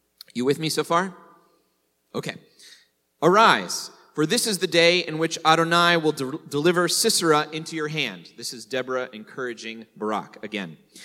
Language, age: English, 30-49